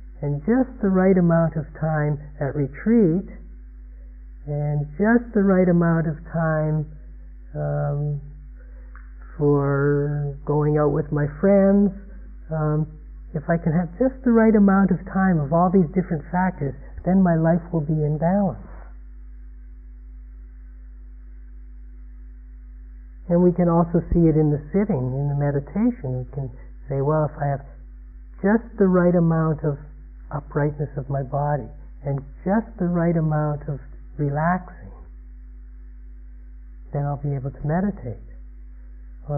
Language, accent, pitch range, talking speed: English, American, 125-170 Hz, 135 wpm